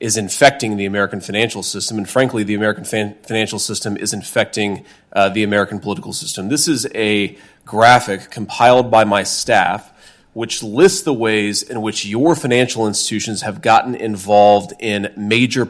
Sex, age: male, 30-49